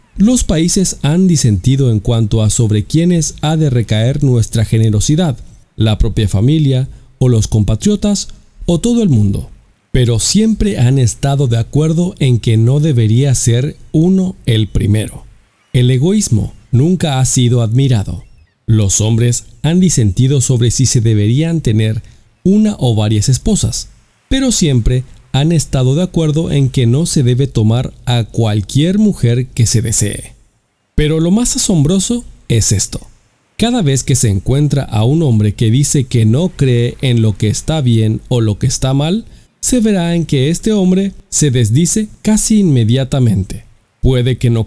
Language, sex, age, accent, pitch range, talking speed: English, male, 40-59, Mexican, 115-160 Hz, 160 wpm